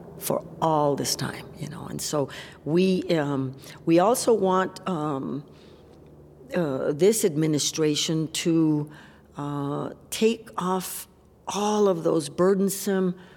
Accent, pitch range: American, 150-190 Hz